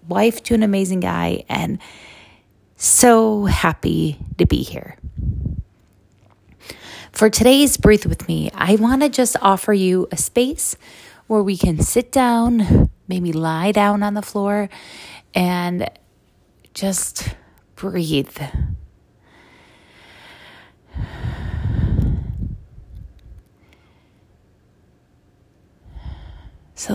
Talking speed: 85 wpm